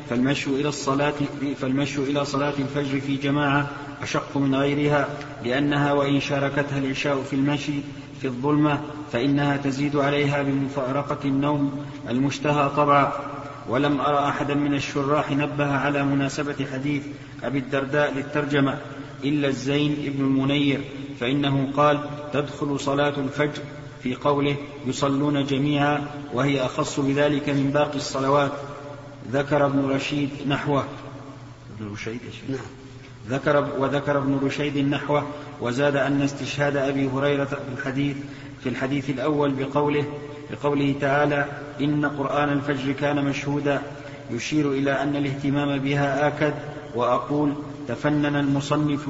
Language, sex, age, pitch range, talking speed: Arabic, male, 40-59, 140-145 Hz, 110 wpm